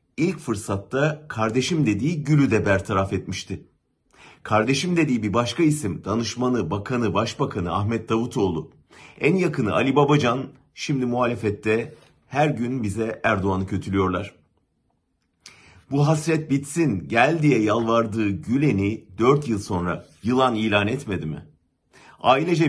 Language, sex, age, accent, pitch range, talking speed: German, male, 50-69, Turkish, 105-155 Hz, 115 wpm